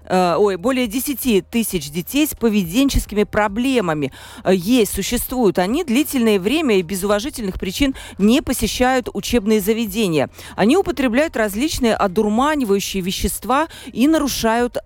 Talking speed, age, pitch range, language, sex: 110 wpm, 40-59, 195-250 Hz, Russian, female